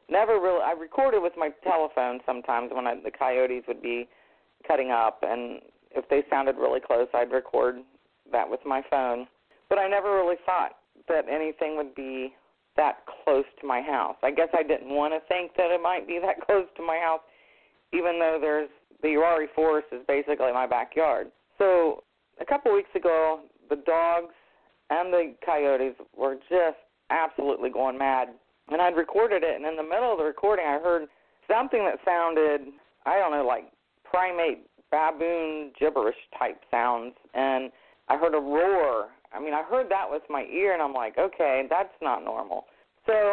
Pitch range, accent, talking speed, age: 135-175 Hz, American, 175 wpm, 40-59